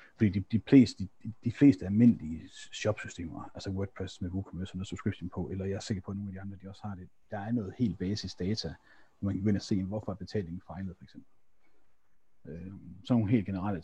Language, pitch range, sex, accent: Danish, 95-110 Hz, male, native